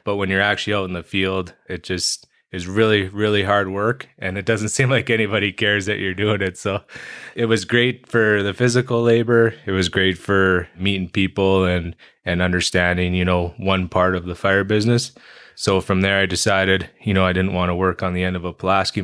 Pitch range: 90-105 Hz